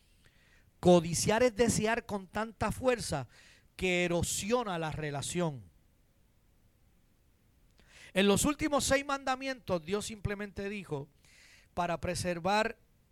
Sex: male